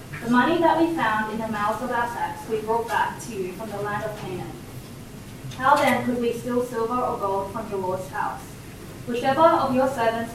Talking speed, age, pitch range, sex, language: 215 wpm, 10-29, 205-255 Hz, female, English